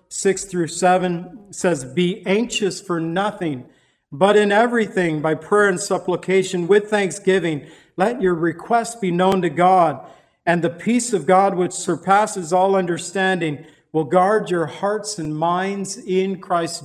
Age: 50-69